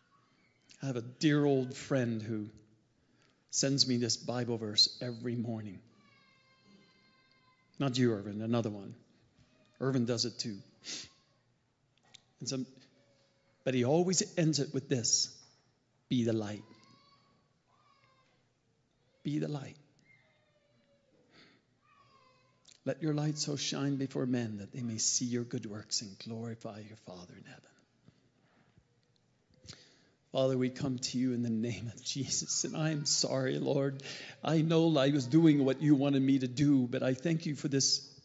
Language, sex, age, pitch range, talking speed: English, male, 40-59, 125-150 Hz, 135 wpm